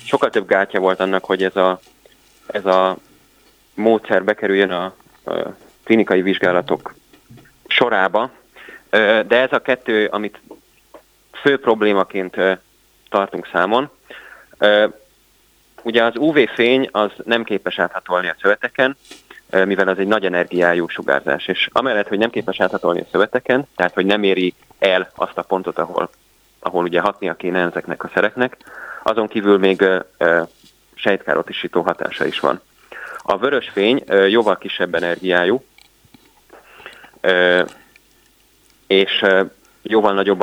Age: 20-39